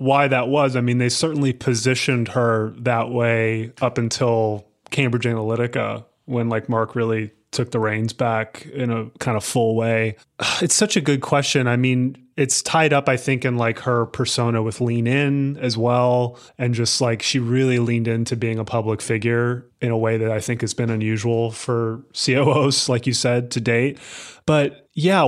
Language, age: English, 30-49